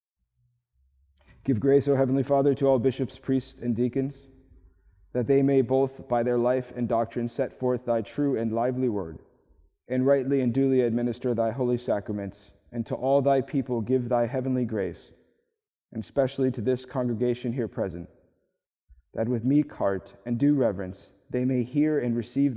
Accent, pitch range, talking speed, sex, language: American, 110-135 Hz, 170 wpm, male, English